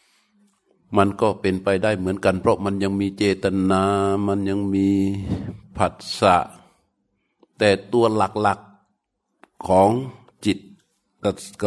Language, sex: Thai, male